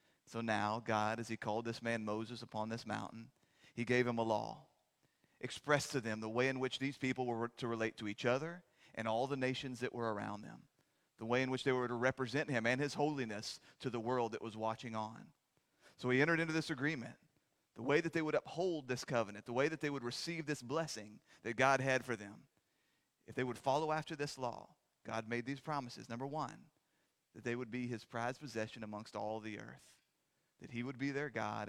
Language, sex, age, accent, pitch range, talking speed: English, male, 30-49, American, 115-140 Hz, 220 wpm